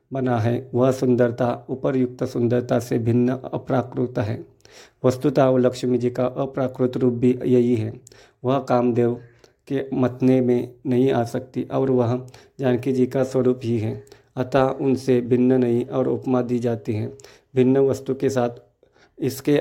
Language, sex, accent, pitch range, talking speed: Hindi, male, native, 120-130 Hz, 155 wpm